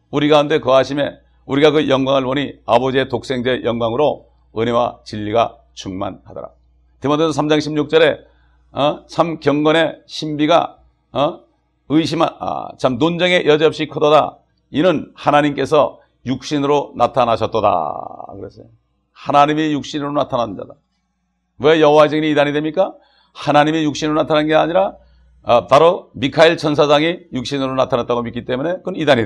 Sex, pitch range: male, 125-170 Hz